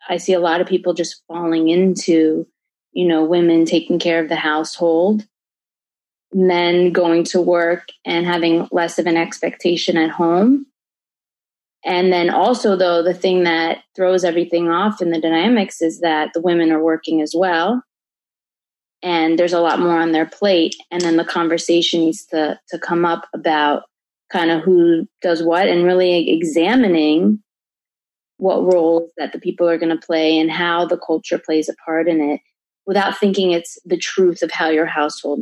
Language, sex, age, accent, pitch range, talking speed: English, female, 20-39, American, 165-190 Hz, 175 wpm